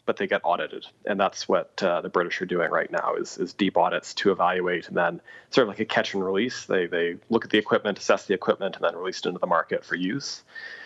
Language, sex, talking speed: English, male, 250 wpm